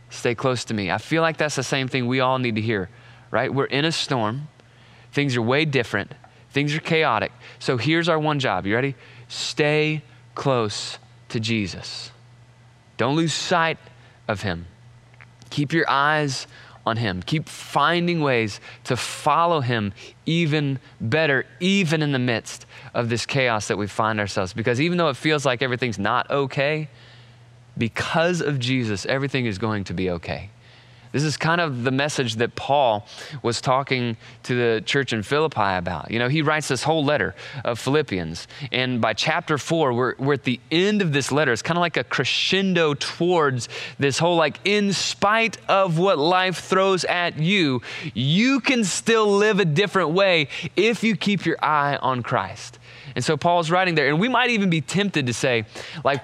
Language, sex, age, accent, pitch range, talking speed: English, male, 20-39, American, 120-160 Hz, 180 wpm